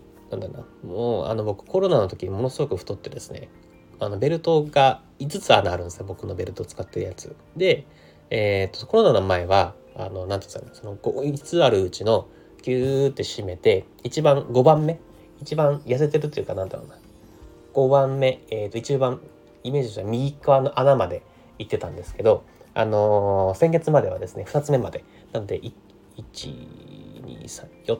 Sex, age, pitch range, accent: male, 30-49, 95-135 Hz, native